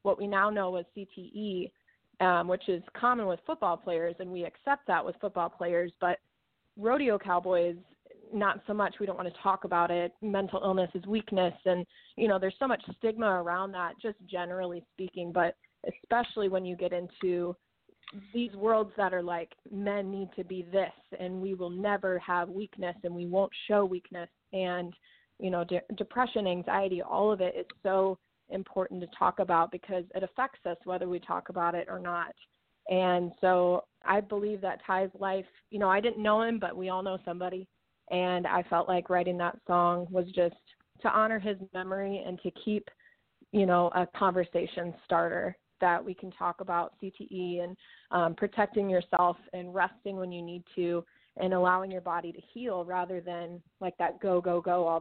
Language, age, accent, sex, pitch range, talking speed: English, 20-39, American, female, 175-200 Hz, 185 wpm